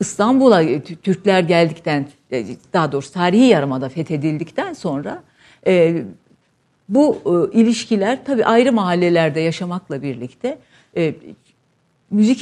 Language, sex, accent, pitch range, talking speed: Turkish, female, native, 160-210 Hz, 100 wpm